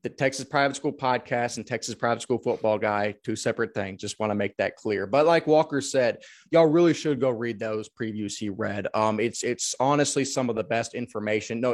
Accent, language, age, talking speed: American, English, 20-39, 220 wpm